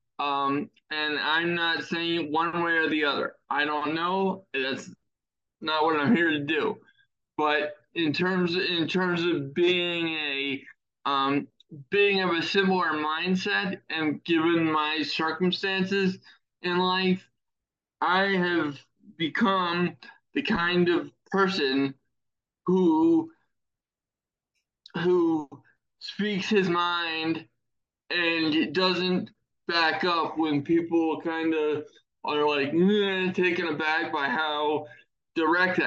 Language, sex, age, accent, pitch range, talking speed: English, male, 20-39, American, 150-185 Hz, 115 wpm